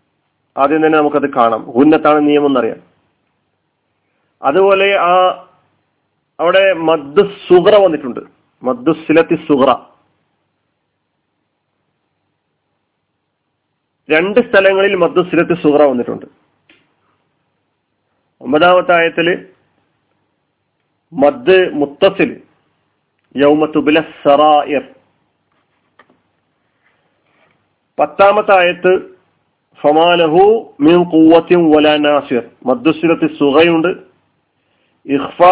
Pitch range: 150-175 Hz